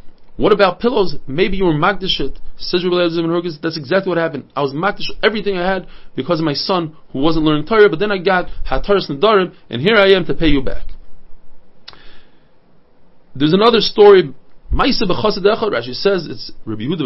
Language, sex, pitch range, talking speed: English, male, 145-195 Hz, 170 wpm